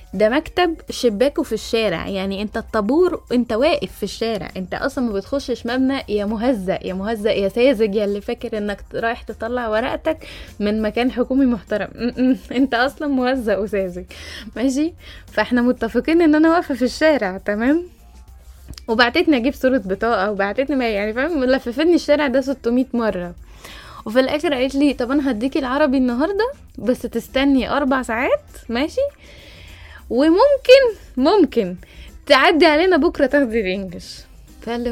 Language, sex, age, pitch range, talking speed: Arabic, female, 10-29, 215-275 Hz, 135 wpm